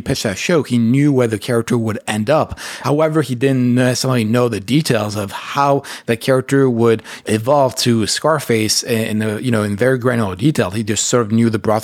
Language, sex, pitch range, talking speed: English, male, 110-135 Hz, 210 wpm